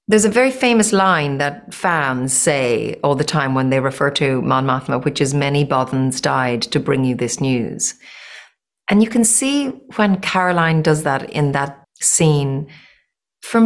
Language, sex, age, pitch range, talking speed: English, female, 40-59, 145-205 Hz, 170 wpm